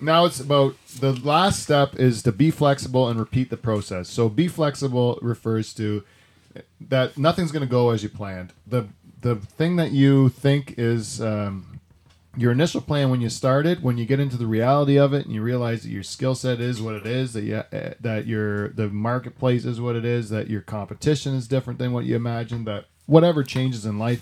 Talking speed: 210 wpm